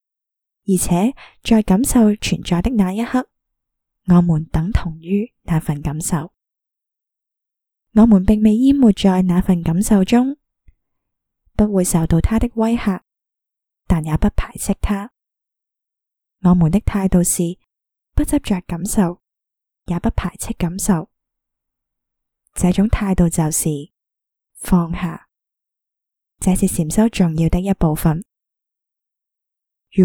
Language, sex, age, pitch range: Chinese, female, 20-39, 170-215 Hz